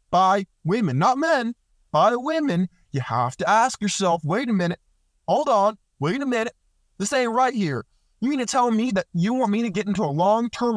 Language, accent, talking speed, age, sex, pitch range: English, American, 205 wpm, 30-49, male, 160-230 Hz